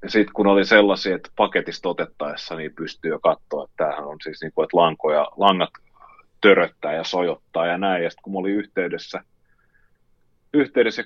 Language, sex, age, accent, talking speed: Finnish, male, 30-49, native, 175 wpm